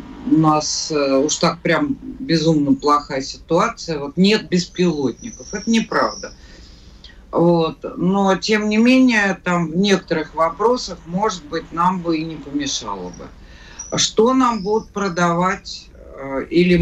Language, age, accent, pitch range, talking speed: Russian, 50-69, native, 135-180 Hz, 125 wpm